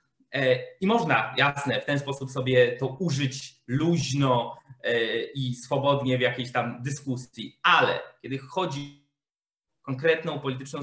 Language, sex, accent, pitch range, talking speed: Polish, male, native, 130-160 Hz, 120 wpm